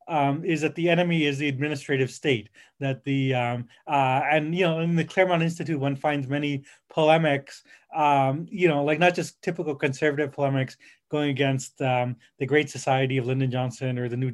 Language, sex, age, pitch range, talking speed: English, male, 30-49, 135-165 Hz, 190 wpm